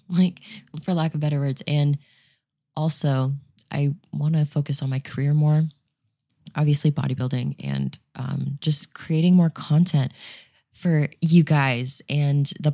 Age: 20-39